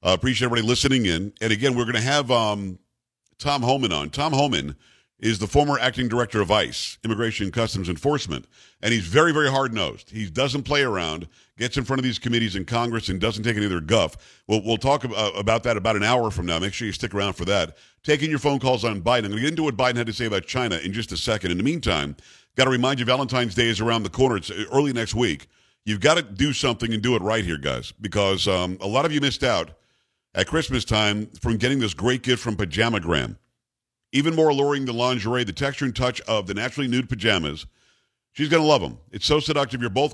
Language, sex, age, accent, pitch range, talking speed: English, male, 50-69, American, 105-130 Hz, 240 wpm